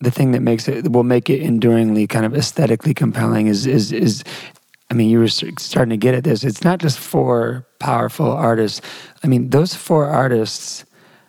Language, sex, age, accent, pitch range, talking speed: English, male, 30-49, American, 120-160 Hz, 190 wpm